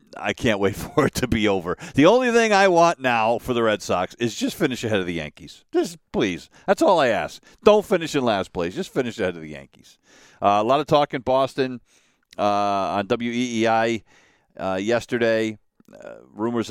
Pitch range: 90-115 Hz